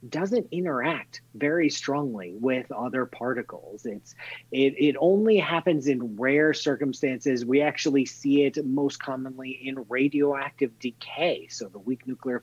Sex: male